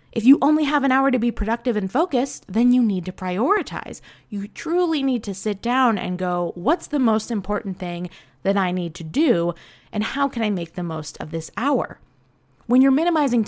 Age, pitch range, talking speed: 20-39, 185-265 Hz, 210 wpm